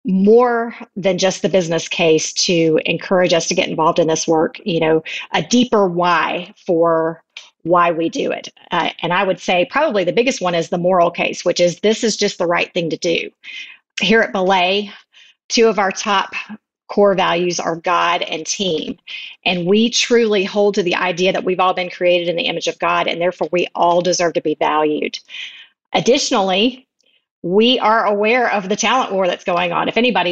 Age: 40-59